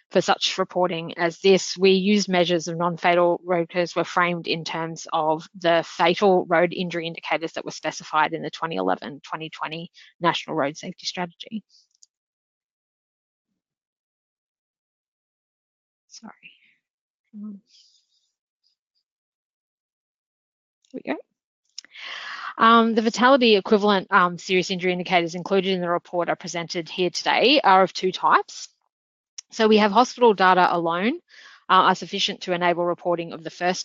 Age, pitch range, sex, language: 20-39, 170-195 Hz, female, English